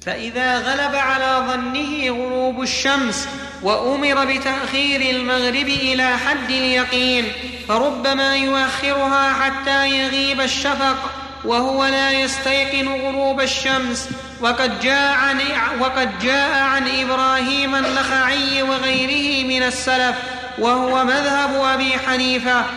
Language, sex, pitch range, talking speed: Arabic, male, 250-270 Hz, 90 wpm